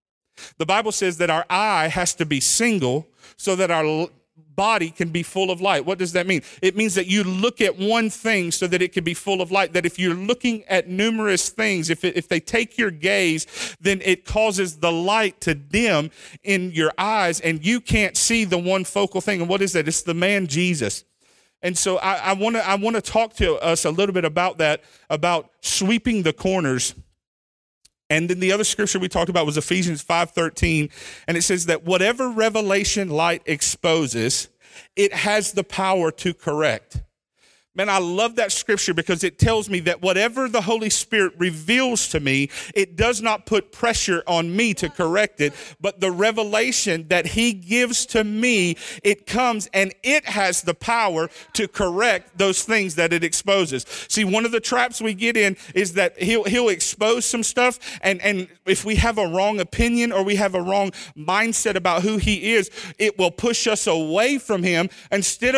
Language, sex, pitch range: English, male, 175-215 Hz